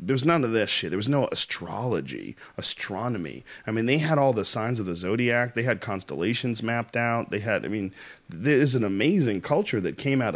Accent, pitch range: American, 100-120 Hz